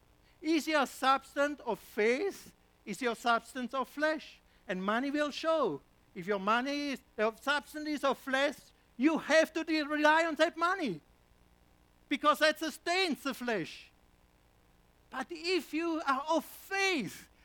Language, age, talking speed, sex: English, 60-79, 145 wpm, male